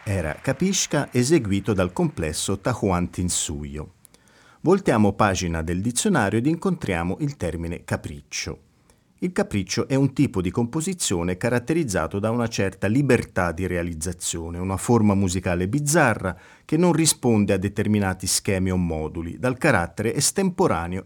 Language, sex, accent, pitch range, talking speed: Italian, male, native, 95-135 Hz, 125 wpm